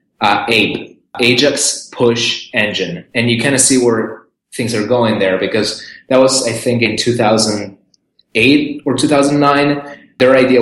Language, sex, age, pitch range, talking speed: English, male, 20-39, 110-125 Hz, 170 wpm